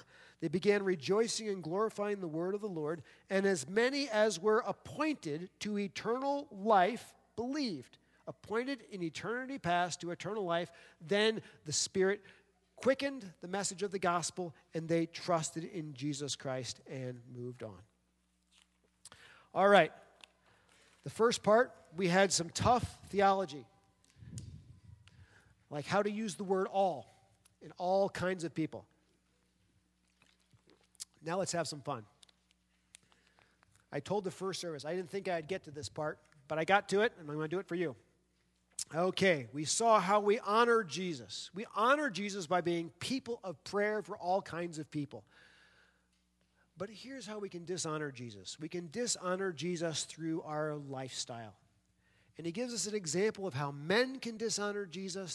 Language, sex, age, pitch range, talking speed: English, male, 40-59, 130-200 Hz, 155 wpm